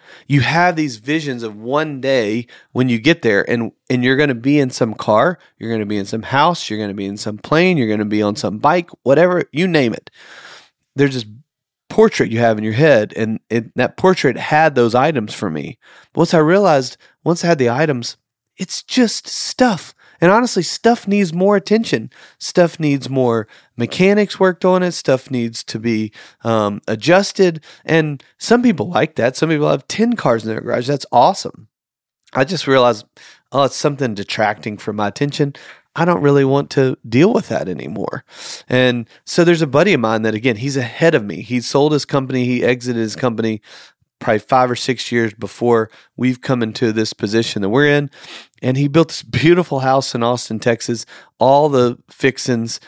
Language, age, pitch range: English, 30-49, 120-160 Hz